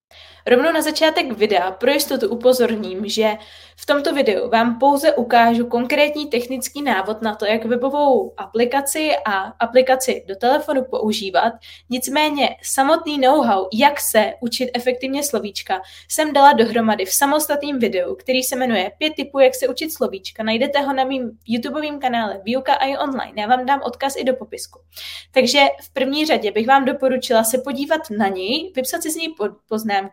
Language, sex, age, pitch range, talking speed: Czech, female, 20-39, 225-285 Hz, 165 wpm